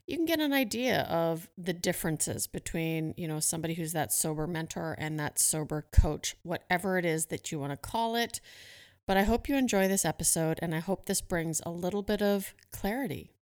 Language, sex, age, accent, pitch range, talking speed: English, female, 30-49, American, 160-190 Hz, 205 wpm